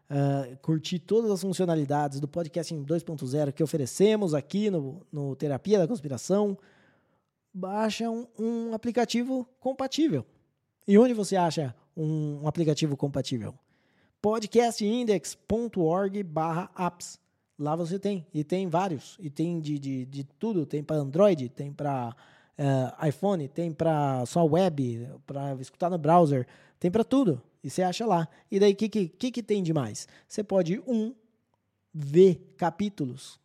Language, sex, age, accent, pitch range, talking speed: Portuguese, male, 20-39, Brazilian, 145-195 Hz, 135 wpm